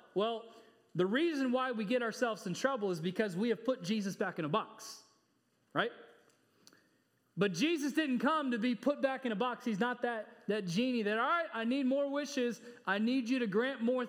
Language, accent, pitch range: English, American, 155-240 Hz